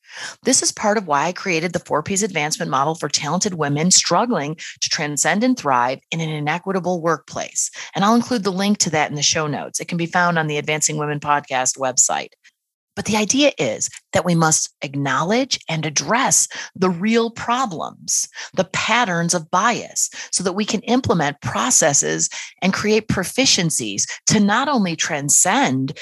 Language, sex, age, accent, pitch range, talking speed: English, female, 30-49, American, 155-215 Hz, 170 wpm